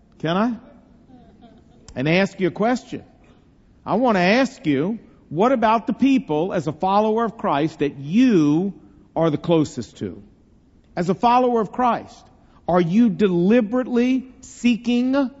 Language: English